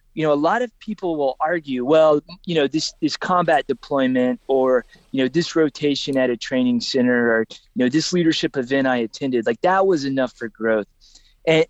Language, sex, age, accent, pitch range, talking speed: English, male, 20-39, American, 130-170 Hz, 200 wpm